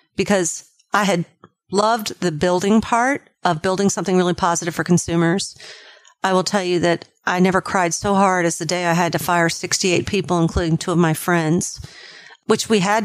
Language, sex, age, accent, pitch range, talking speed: English, female, 40-59, American, 165-200 Hz, 190 wpm